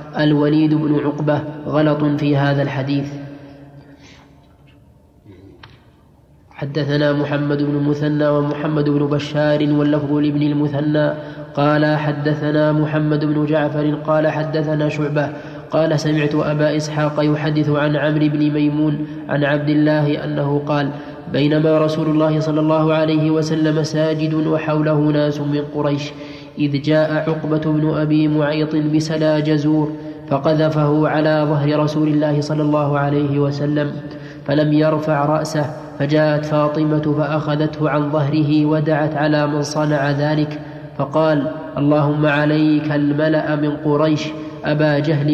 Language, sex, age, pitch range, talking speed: Arabic, male, 20-39, 150-155 Hz, 120 wpm